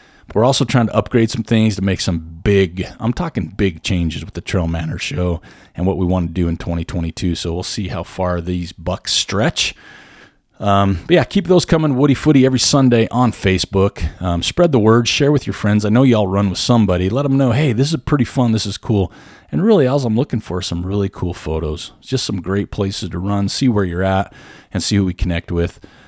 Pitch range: 90-120 Hz